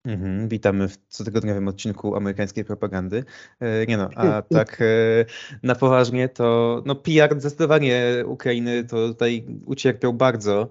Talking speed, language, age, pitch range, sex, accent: 135 wpm, Polish, 20-39, 110-125 Hz, male, native